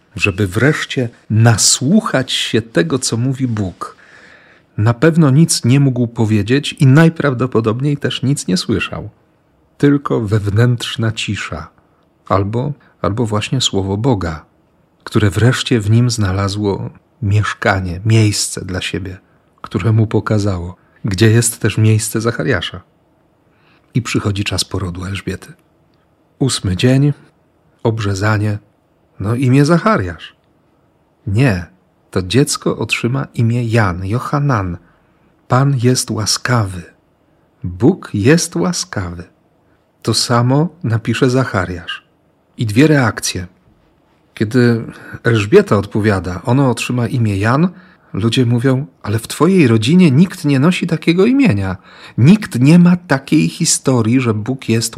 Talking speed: 110 wpm